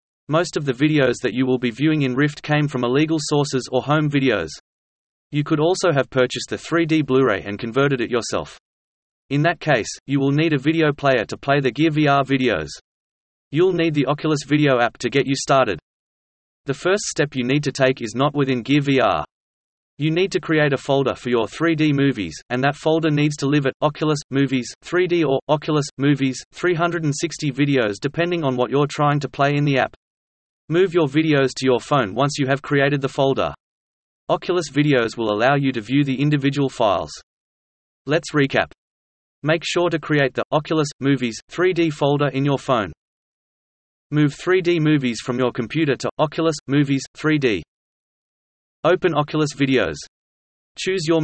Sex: male